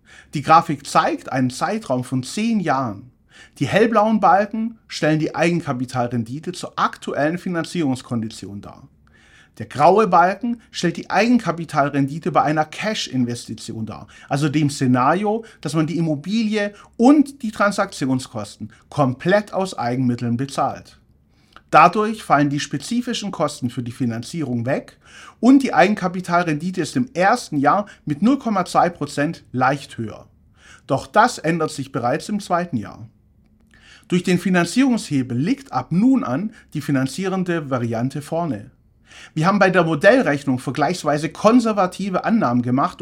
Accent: German